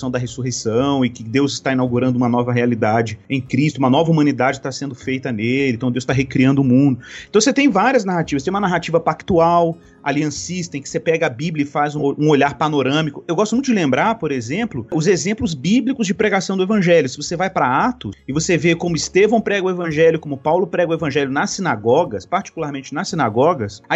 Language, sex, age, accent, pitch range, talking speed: Portuguese, male, 30-49, Brazilian, 140-185 Hz, 210 wpm